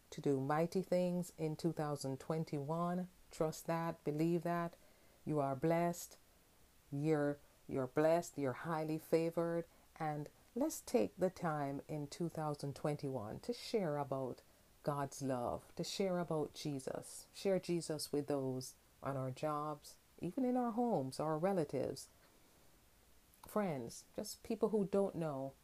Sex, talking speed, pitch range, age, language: female, 125 wpm, 140-170 Hz, 40-59, English